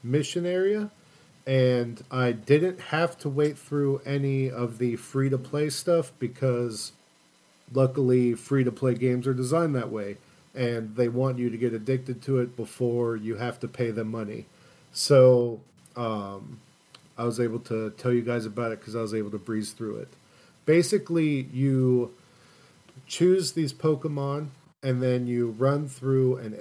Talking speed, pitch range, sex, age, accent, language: 155 wpm, 120-150 Hz, male, 40-59, American, English